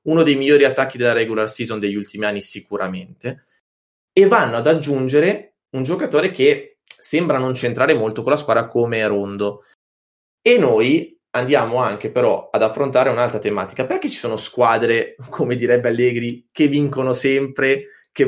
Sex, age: male, 20-39